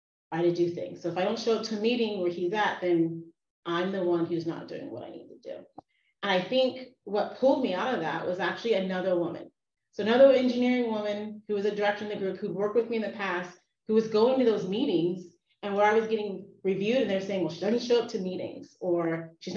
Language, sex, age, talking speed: English, female, 30-49, 260 wpm